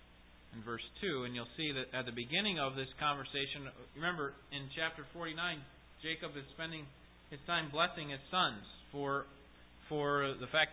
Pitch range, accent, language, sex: 125-170 Hz, American, English, male